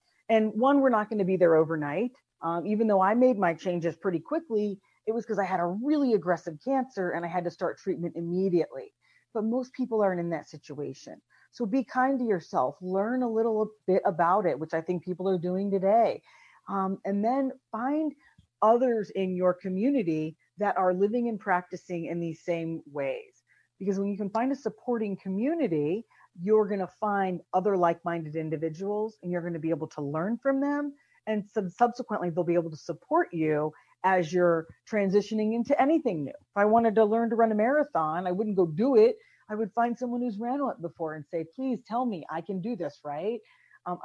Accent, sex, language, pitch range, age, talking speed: American, female, English, 170-230 Hz, 40-59, 205 wpm